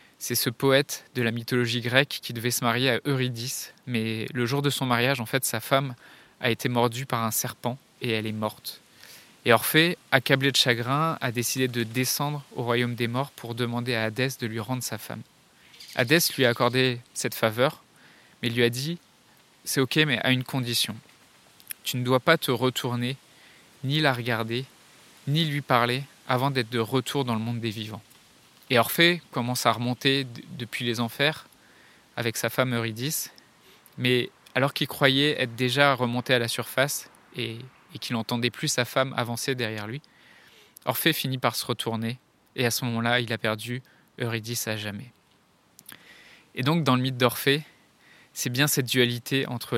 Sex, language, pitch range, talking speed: male, French, 115-135 Hz, 185 wpm